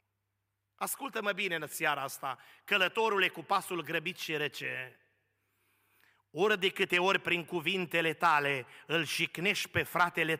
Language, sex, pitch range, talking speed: Romanian, male, 155-205 Hz, 125 wpm